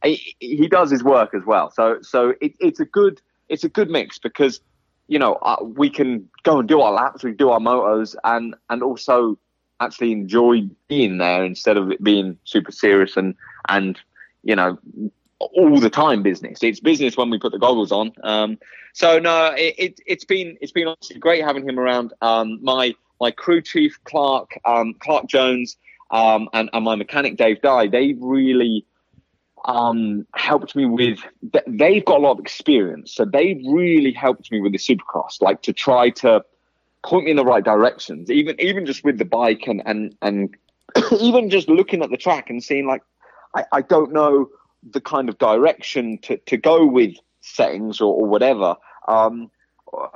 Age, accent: 20-39, British